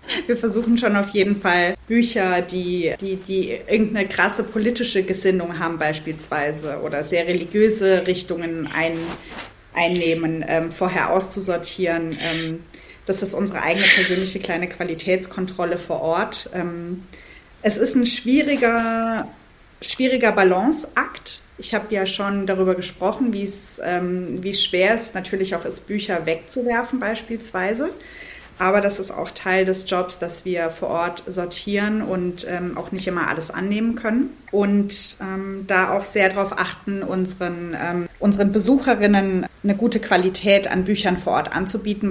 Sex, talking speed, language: female, 135 wpm, German